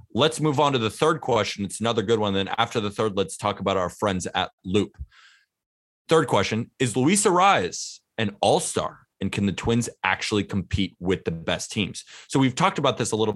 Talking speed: 205 wpm